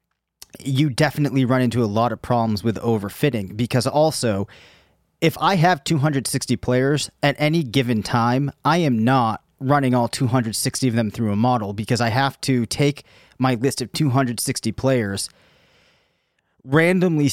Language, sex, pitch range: English, male, 115-140 Hz